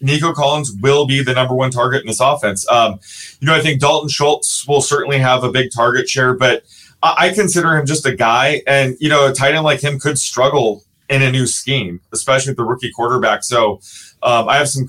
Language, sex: English, male